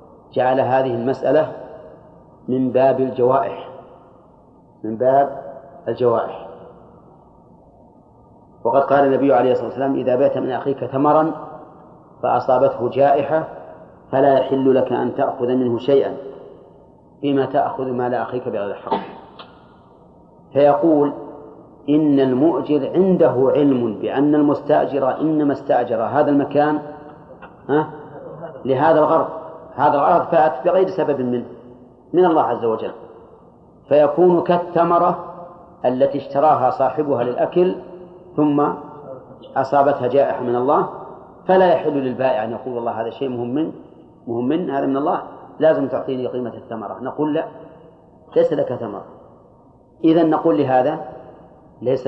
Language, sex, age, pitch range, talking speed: Arabic, male, 40-59, 130-155 Hz, 110 wpm